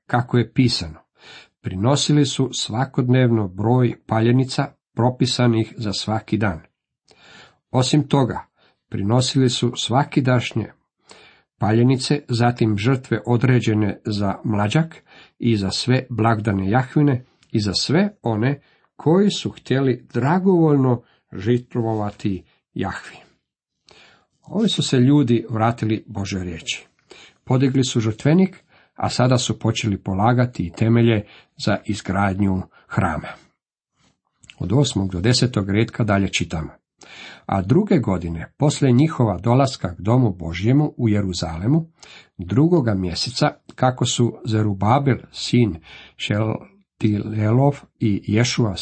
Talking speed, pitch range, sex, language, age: 105 wpm, 105-130 Hz, male, Croatian, 50-69